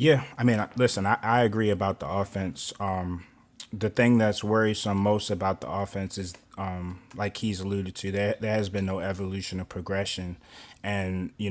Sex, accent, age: male, American, 20-39